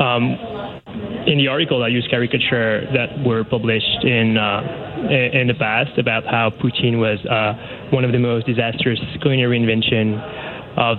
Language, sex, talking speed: English, male, 155 wpm